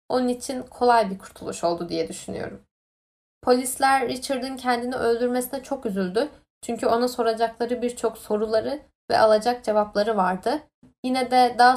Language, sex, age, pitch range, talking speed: Turkish, female, 10-29, 225-270 Hz, 135 wpm